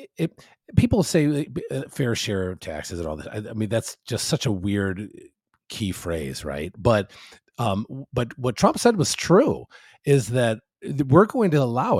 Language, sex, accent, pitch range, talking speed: English, male, American, 105-150 Hz, 175 wpm